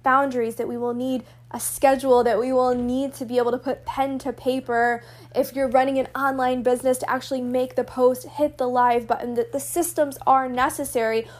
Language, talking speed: English, 205 wpm